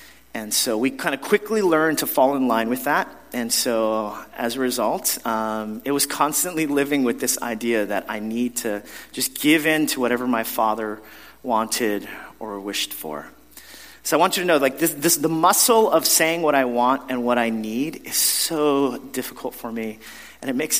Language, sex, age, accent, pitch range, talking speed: English, male, 30-49, American, 120-195 Hz, 200 wpm